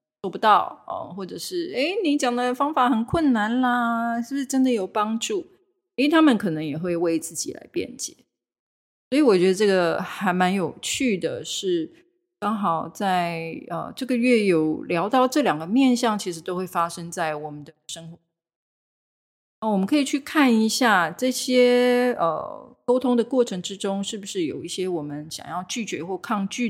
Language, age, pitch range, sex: Chinese, 30-49, 165-245 Hz, female